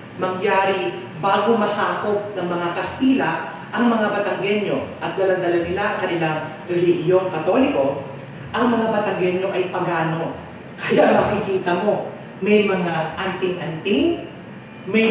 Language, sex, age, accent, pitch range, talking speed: English, male, 40-59, Filipino, 170-220 Hz, 110 wpm